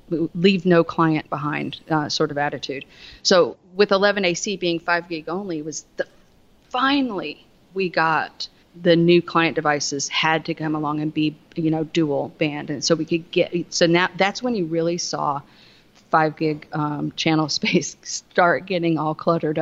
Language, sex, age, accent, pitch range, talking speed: English, female, 40-59, American, 155-175 Hz, 170 wpm